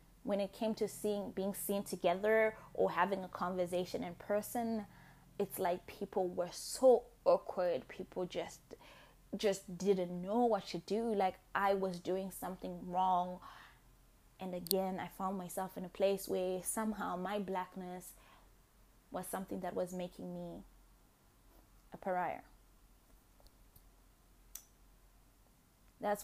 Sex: female